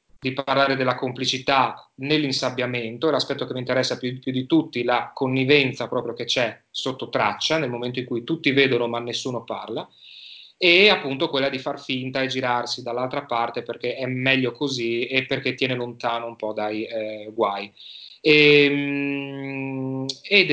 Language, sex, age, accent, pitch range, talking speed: Italian, male, 30-49, native, 125-140 Hz, 155 wpm